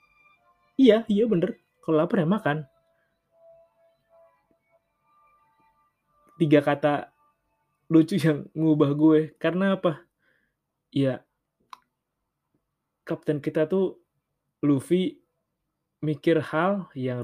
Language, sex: Indonesian, male